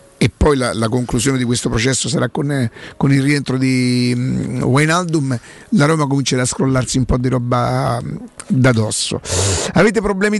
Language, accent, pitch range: Italian, native, 130-180 Hz